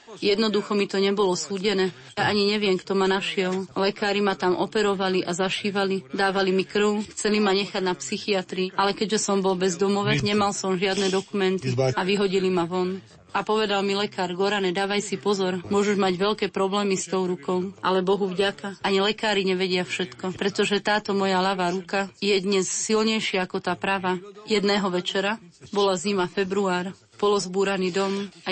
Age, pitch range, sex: 30-49, 190-205 Hz, female